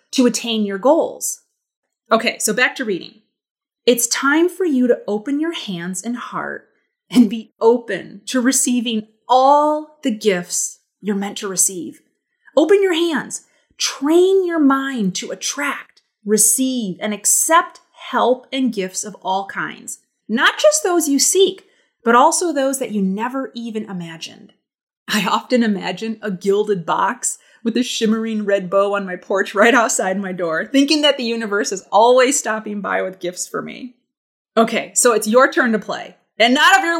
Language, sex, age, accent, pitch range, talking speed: English, female, 30-49, American, 195-270 Hz, 165 wpm